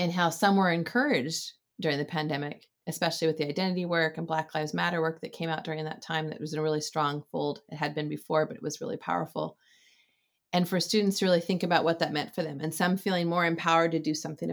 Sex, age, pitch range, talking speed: female, 30-49, 155-185 Hz, 250 wpm